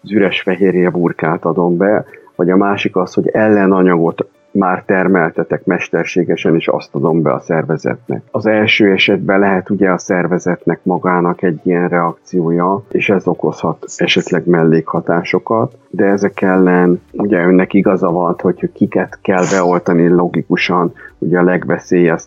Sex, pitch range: male, 85-90 Hz